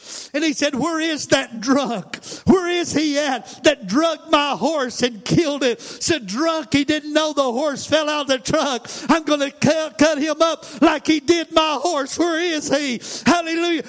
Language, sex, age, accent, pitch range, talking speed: English, male, 50-69, American, 285-330 Hz, 205 wpm